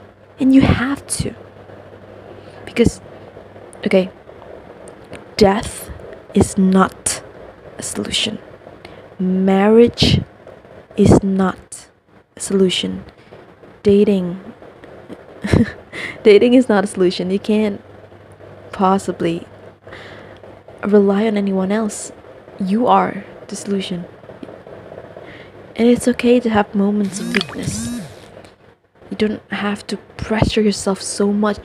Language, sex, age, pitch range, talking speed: Indonesian, female, 20-39, 185-215 Hz, 90 wpm